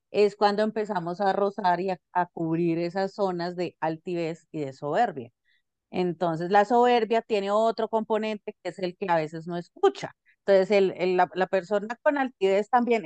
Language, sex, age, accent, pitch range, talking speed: Spanish, female, 30-49, Colombian, 180-220 Hz, 180 wpm